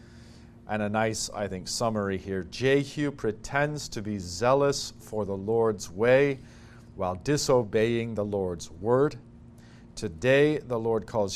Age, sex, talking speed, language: 40-59, male, 130 wpm, English